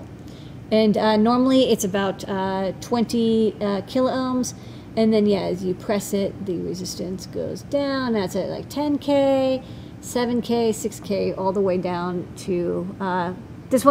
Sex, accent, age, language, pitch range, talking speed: female, American, 40-59, English, 190-235 Hz, 140 wpm